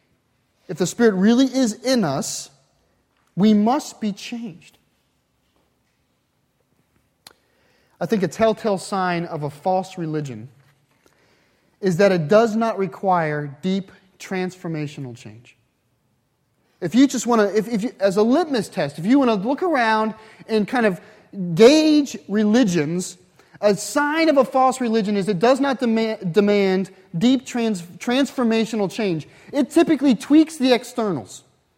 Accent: American